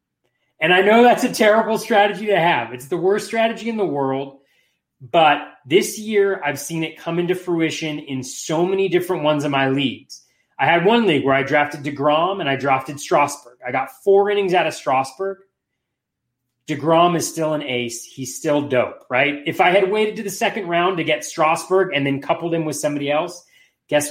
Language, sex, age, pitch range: English, male, 30-49, 135-180 Hz